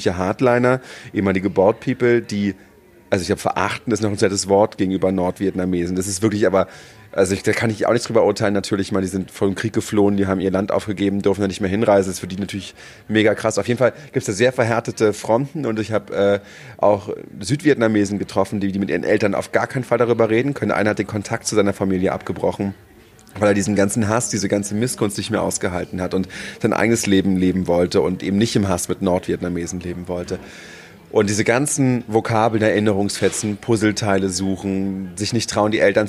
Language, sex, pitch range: German, male, 95-110 Hz